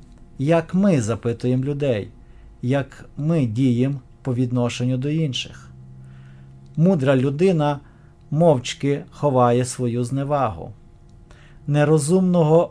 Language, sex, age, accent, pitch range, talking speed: Ukrainian, male, 40-59, native, 115-150 Hz, 85 wpm